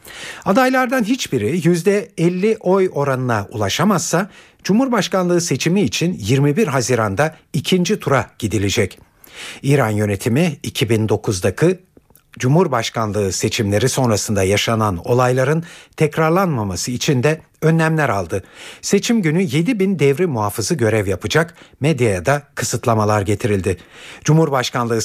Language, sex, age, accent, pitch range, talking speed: Turkish, male, 60-79, native, 110-170 Hz, 95 wpm